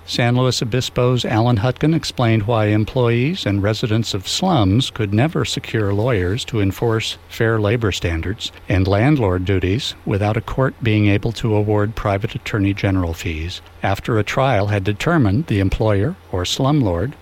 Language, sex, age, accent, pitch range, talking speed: English, male, 60-79, American, 100-130 Hz, 155 wpm